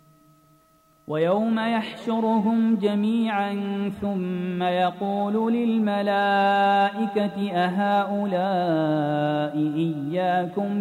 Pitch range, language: 160-220 Hz, Arabic